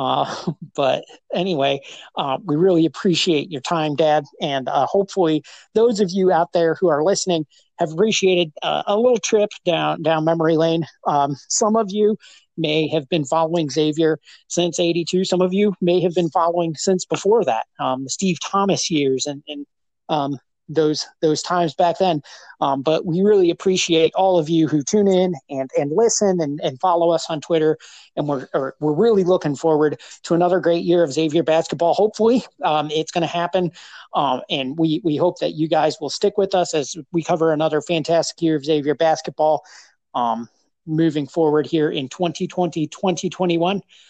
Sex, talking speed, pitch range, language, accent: male, 180 wpm, 155-185 Hz, English, American